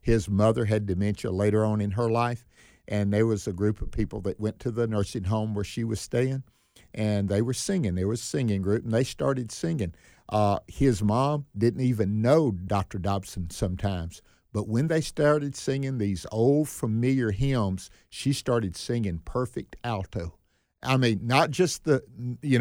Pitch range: 105-135 Hz